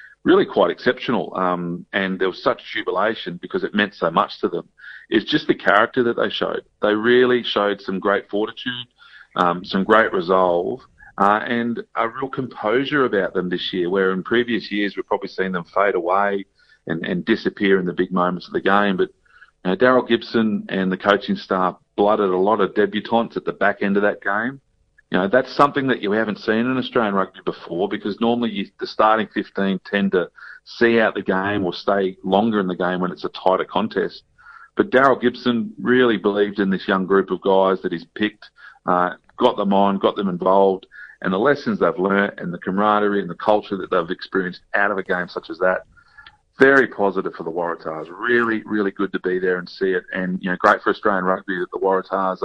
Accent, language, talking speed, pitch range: Australian, English, 210 wpm, 95-115 Hz